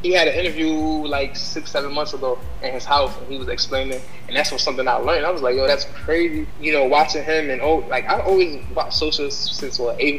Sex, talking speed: male, 235 wpm